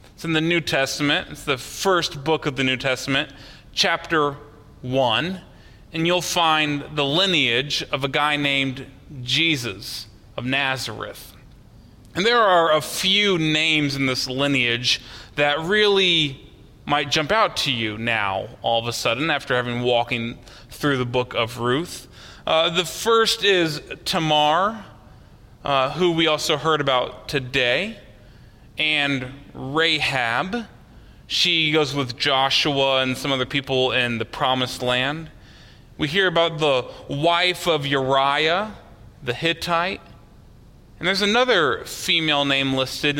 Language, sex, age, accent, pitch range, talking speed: English, male, 30-49, American, 125-165 Hz, 135 wpm